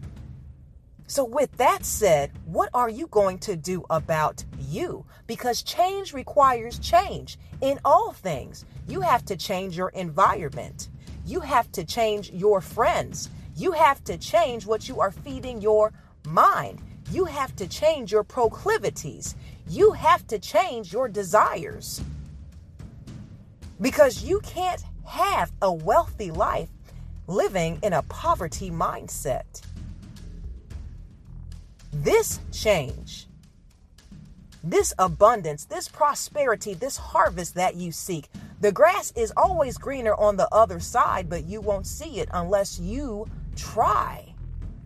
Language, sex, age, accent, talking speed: English, female, 40-59, American, 125 wpm